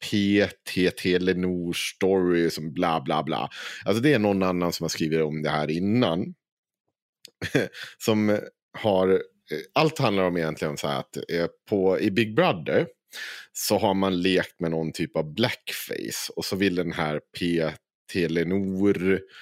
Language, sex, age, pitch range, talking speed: Swedish, male, 30-49, 80-105 Hz, 140 wpm